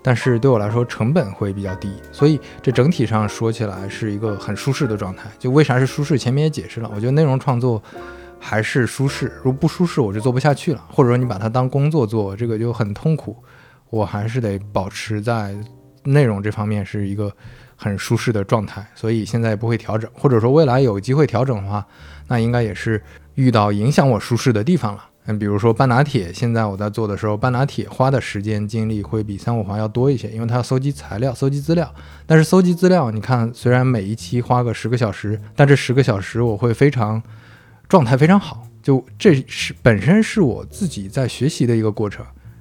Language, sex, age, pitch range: Chinese, male, 20-39, 105-130 Hz